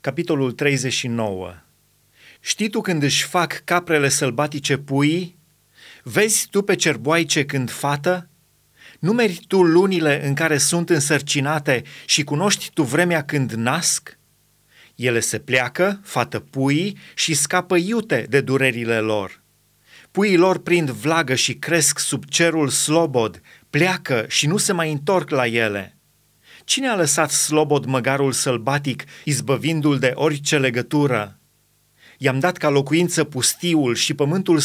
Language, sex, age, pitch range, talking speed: Romanian, male, 30-49, 135-165 Hz, 130 wpm